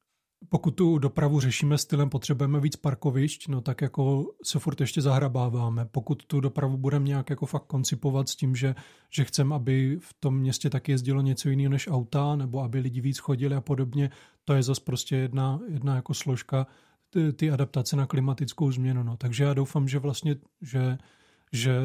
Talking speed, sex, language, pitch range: 185 wpm, male, Czech, 135-150 Hz